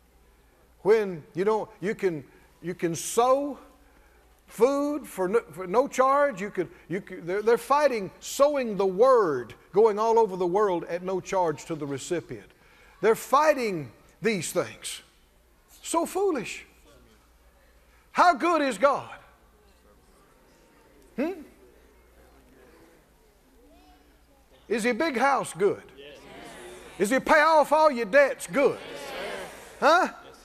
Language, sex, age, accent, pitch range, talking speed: English, male, 50-69, American, 190-315 Hz, 120 wpm